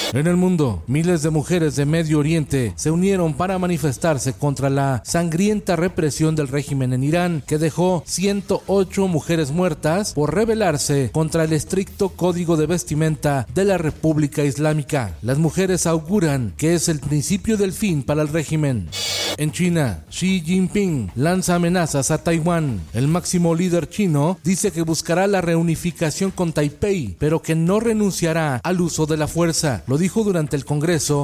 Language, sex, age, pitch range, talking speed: Spanish, male, 40-59, 150-180 Hz, 160 wpm